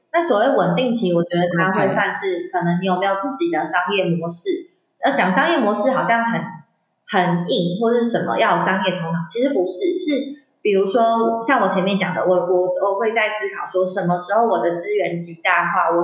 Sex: female